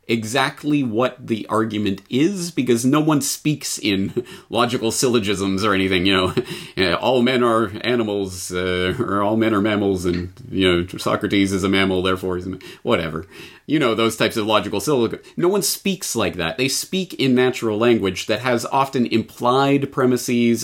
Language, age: English, 30-49